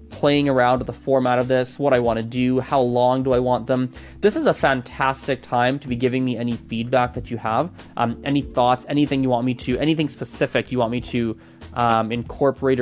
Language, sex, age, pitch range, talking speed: English, male, 20-39, 120-155 Hz, 225 wpm